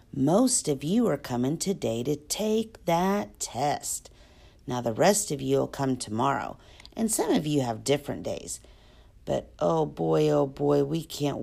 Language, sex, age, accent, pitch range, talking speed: English, female, 50-69, American, 130-200 Hz, 170 wpm